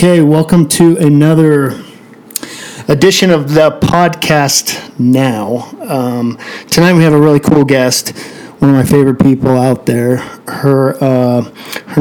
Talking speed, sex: 125 wpm, male